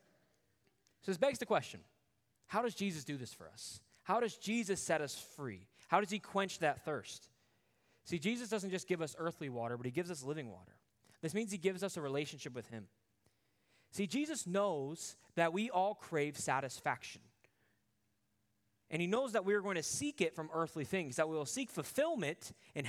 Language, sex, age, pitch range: English, male, 20-39, 135-205 Hz